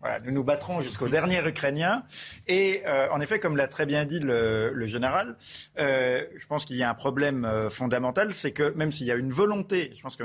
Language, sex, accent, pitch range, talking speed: French, male, French, 130-160 Hz, 235 wpm